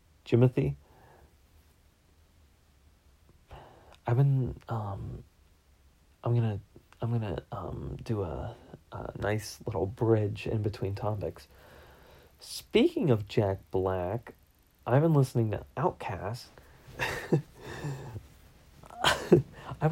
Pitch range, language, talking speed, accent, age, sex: 90-135 Hz, English, 85 wpm, American, 30-49, male